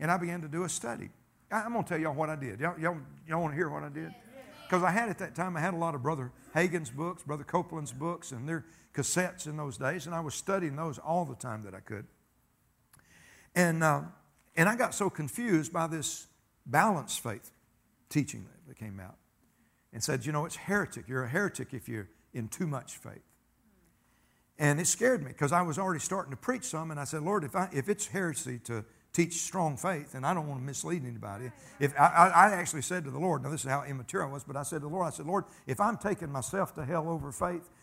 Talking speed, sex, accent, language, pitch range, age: 245 wpm, male, American, English, 130-175 Hz, 60-79